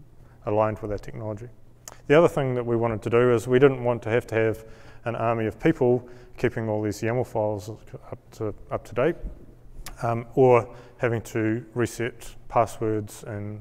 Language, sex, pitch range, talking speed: English, male, 110-125 Hz, 180 wpm